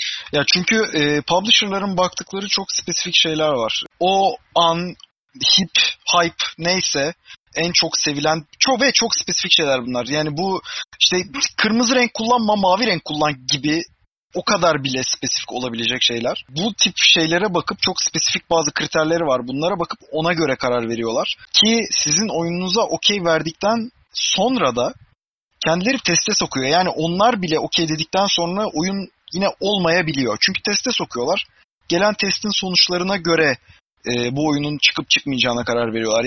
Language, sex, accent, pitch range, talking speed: Turkish, male, native, 155-195 Hz, 145 wpm